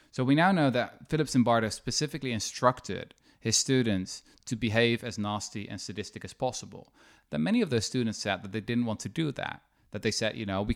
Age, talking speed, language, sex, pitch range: 20-39, 210 wpm, English, male, 100-130 Hz